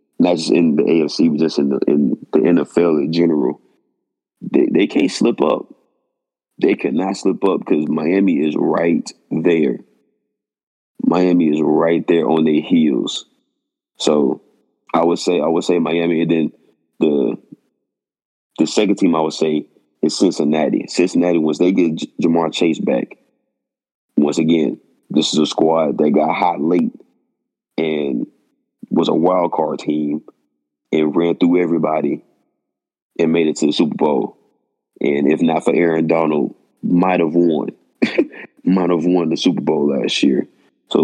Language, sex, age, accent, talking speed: English, male, 30-49, American, 155 wpm